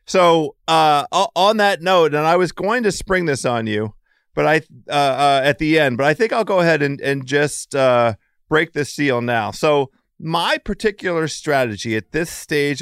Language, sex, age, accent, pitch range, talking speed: English, male, 40-59, American, 115-155 Hz, 195 wpm